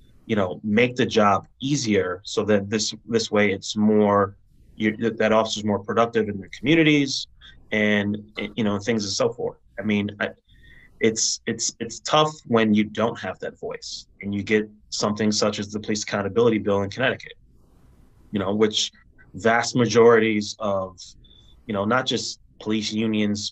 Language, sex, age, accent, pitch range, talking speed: English, male, 20-39, American, 105-115 Hz, 170 wpm